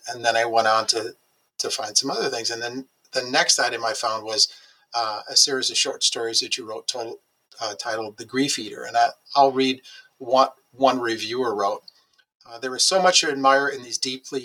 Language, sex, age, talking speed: English, male, 50-69, 210 wpm